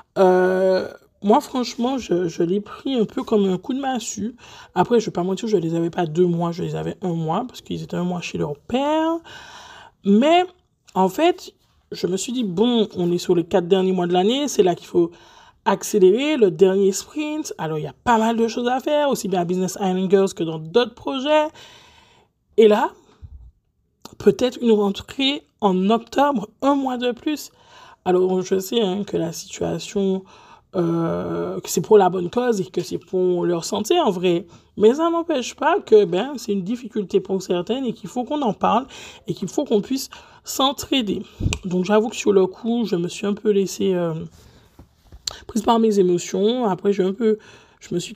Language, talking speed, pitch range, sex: French, 205 wpm, 185-250 Hz, male